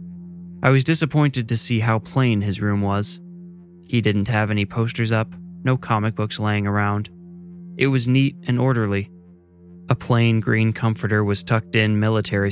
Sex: male